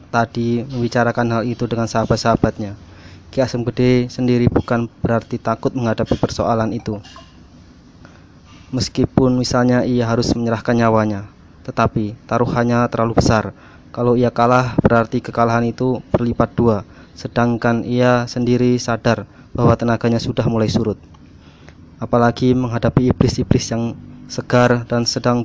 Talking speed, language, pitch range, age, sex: 120 wpm, Indonesian, 110-120 Hz, 20-39, male